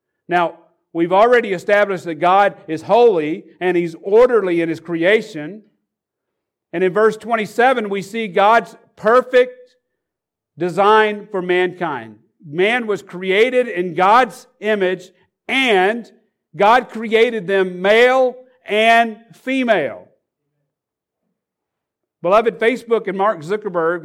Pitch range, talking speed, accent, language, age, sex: 170-230 Hz, 105 wpm, American, English, 50-69, male